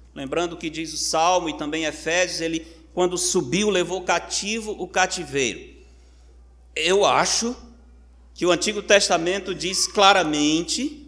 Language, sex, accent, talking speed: Portuguese, male, Brazilian, 125 wpm